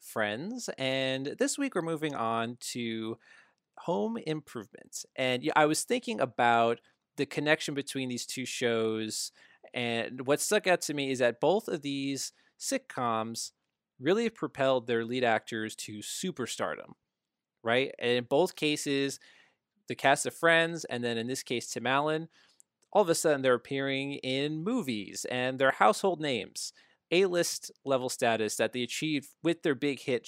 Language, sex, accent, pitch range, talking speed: English, male, American, 120-155 Hz, 155 wpm